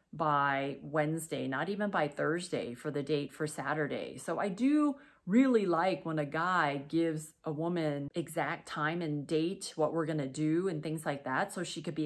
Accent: American